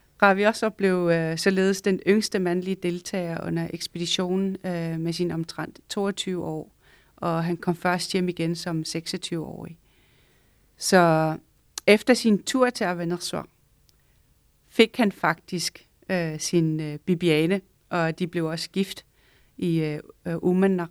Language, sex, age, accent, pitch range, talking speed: Danish, female, 40-59, native, 165-190 Hz, 120 wpm